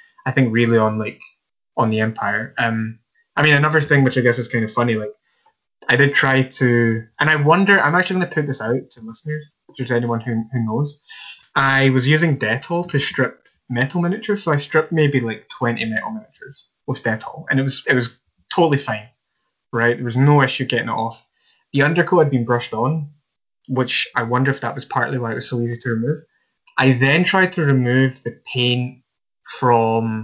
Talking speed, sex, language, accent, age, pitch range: 205 wpm, male, English, British, 20-39, 120-165 Hz